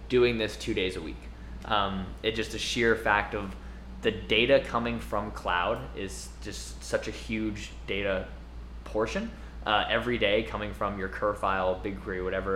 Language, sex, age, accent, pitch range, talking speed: English, male, 20-39, American, 95-110 Hz, 165 wpm